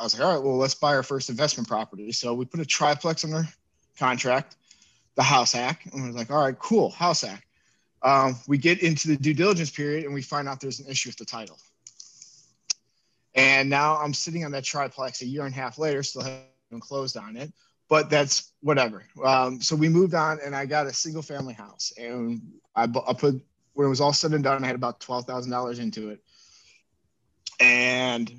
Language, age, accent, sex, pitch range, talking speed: English, 30-49, American, male, 125-150 Hz, 210 wpm